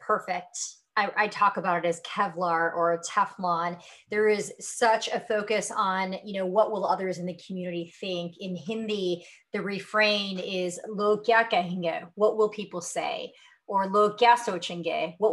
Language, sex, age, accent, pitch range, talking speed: English, female, 30-49, American, 180-220 Hz, 155 wpm